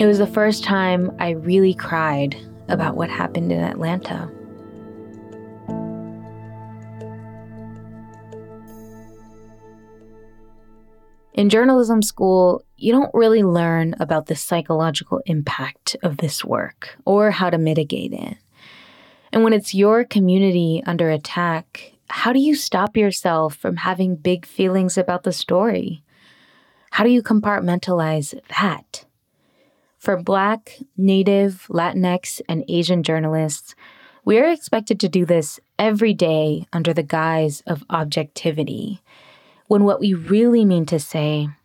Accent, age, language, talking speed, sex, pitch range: American, 20-39, English, 120 wpm, female, 155-200 Hz